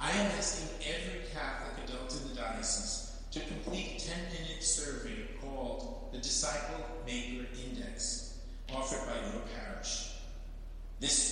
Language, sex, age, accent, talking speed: English, male, 50-69, American, 120 wpm